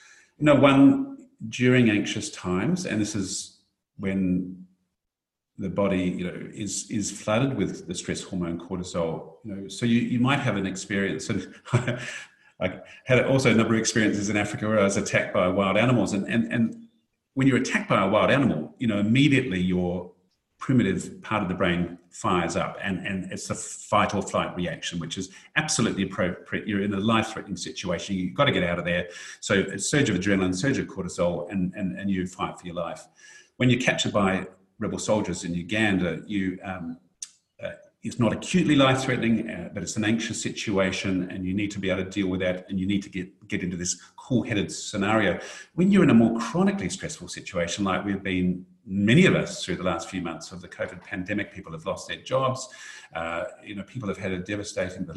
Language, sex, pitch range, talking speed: English, male, 95-115 Hz, 200 wpm